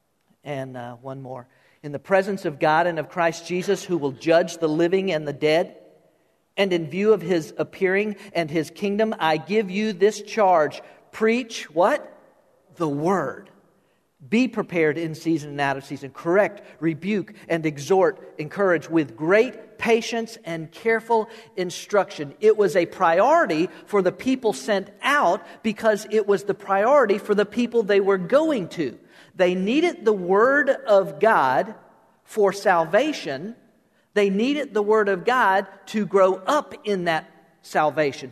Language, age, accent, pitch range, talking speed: English, 50-69, American, 150-210 Hz, 155 wpm